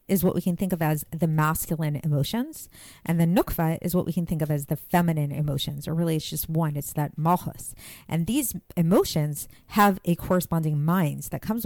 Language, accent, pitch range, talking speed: English, American, 155-180 Hz, 205 wpm